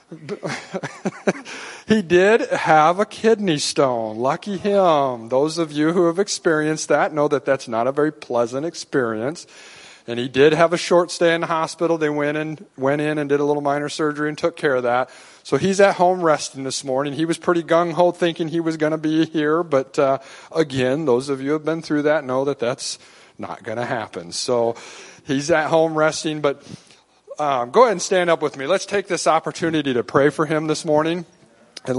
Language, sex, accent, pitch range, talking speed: English, male, American, 135-170 Hz, 205 wpm